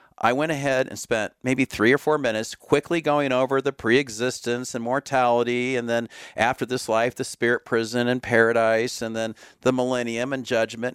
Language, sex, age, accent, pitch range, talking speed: English, male, 50-69, American, 115-145 Hz, 180 wpm